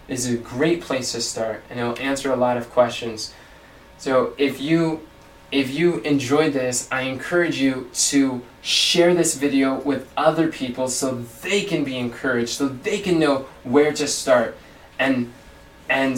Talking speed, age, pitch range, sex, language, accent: 165 wpm, 20-39, 130-155 Hz, male, English, American